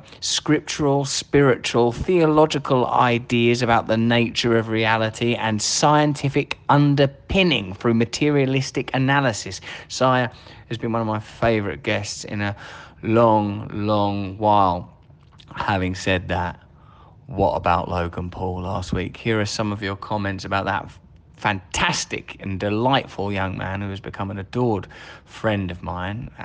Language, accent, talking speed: English, British, 130 wpm